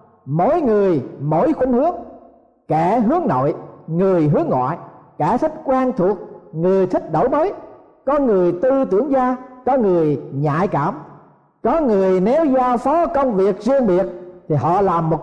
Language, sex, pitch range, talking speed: Vietnamese, male, 155-235 Hz, 160 wpm